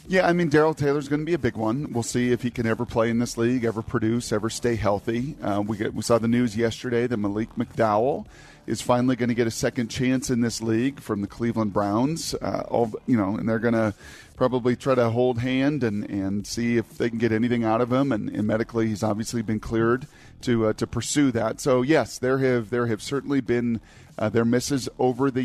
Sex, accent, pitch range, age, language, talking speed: male, American, 110-135 Hz, 40-59, English, 250 wpm